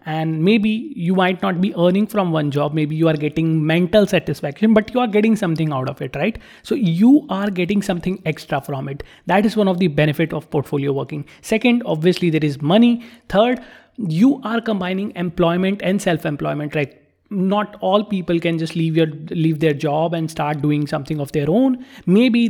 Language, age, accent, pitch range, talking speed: English, 30-49, Indian, 160-205 Hz, 195 wpm